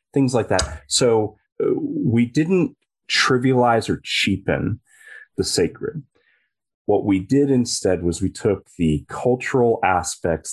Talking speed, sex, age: 125 wpm, male, 30-49